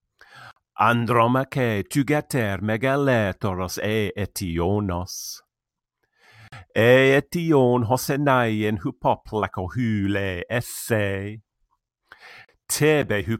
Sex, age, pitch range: male, 50-69, 105-140 Hz